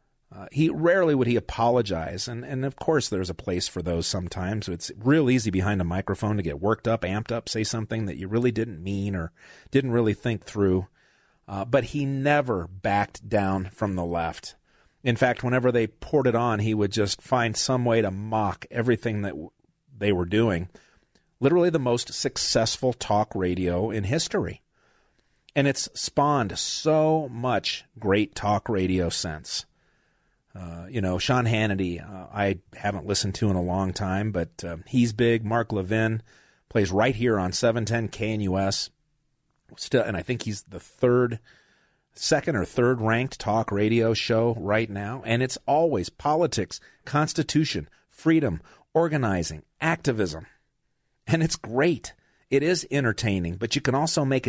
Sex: male